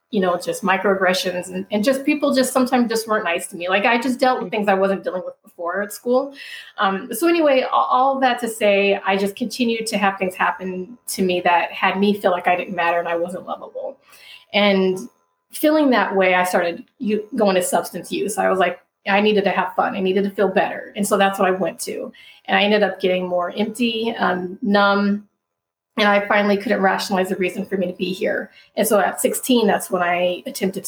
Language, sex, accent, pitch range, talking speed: English, female, American, 185-230 Hz, 225 wpm